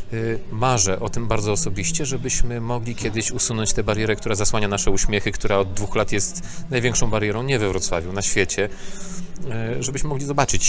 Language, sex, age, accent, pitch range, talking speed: Polish, male, 30-49, native, 105-140 Hz, 170 wpm